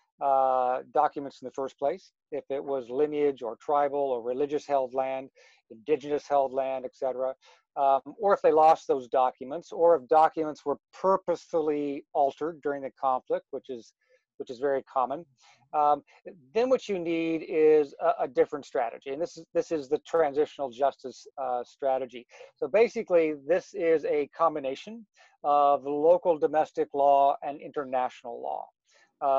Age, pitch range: 50-69, 135-170 Hz